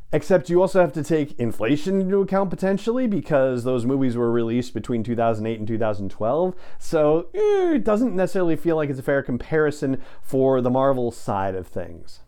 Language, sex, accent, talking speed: English, male, American, 170 wpm